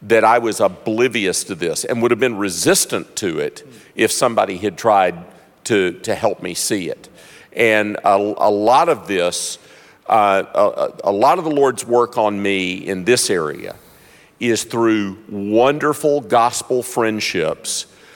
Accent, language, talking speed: American, English, 155 wpm